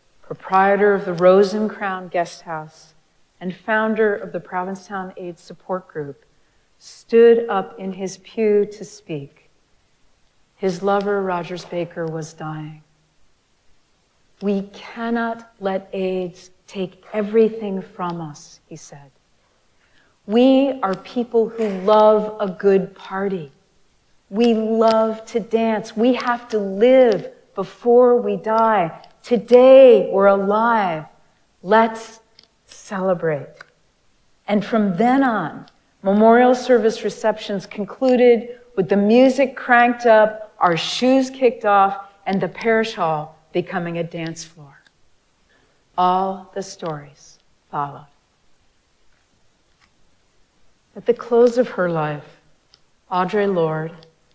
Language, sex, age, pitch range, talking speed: English, female, 50-69, 180-225 Hz, 110 wpm